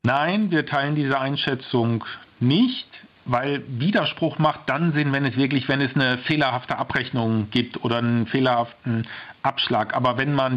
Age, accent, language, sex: 50-69, German, German, male